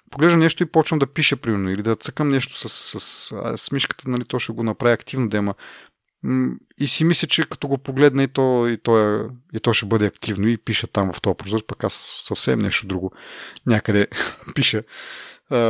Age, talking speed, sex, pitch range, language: 30-49, 205 wpm, male, 105-130 Hz, Bulgarian